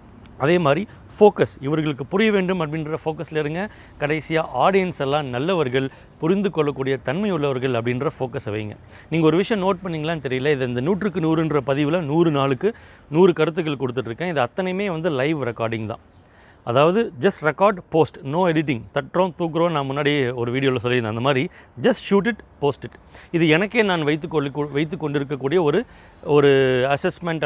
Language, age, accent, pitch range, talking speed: Tamil, 30-49, native, 130-175 Hz, 155 wpm